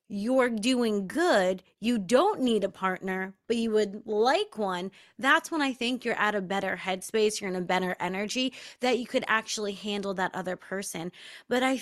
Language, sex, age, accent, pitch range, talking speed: English, female, 30-49, American, 215-335 Hz, 190 wpm